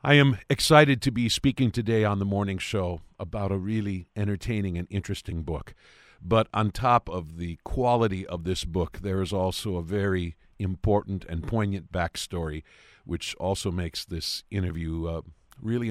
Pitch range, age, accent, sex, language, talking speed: 85-105 Hz, 50-69, American, male, English, 160 wpm